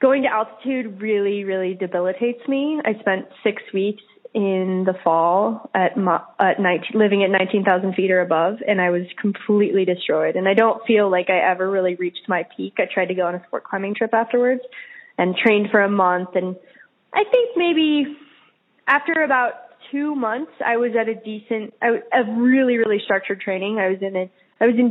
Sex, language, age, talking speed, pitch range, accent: female, English, 20-39, 190 wpm, 185-225 Hz, American